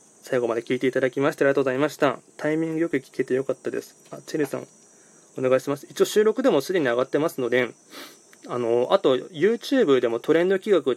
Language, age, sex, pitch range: Japanese, 20-39, male, 125-155 Hz